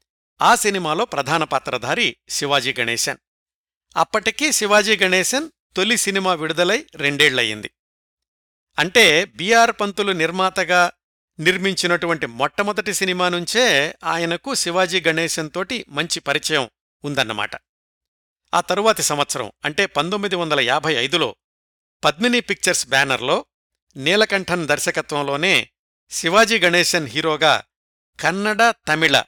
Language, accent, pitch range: Telugu, native, 145-190 Hz